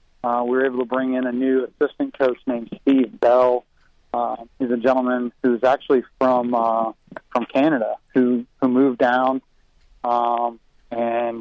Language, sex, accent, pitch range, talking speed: English, male, American, 120-130 Hz, 165 wpm